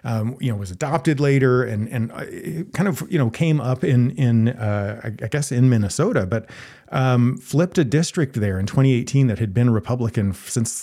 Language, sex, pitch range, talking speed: English, male, 110-140 Hz, 185 wpm